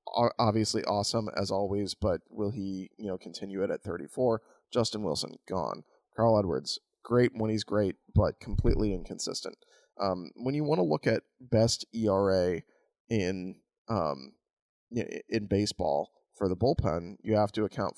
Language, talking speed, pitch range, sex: English, 150 wpm, 95-115 Hz, male